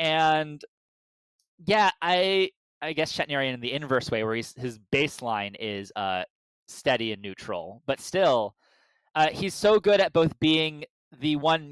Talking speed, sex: 155 wpm, male